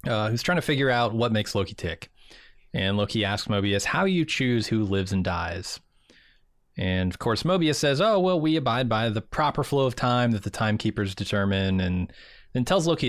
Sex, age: male, 20-39